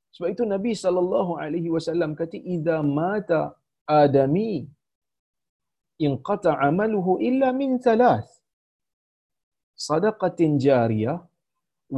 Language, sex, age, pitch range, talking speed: Malayalam, male, 40-59, 160-240 Hz, 80 wpm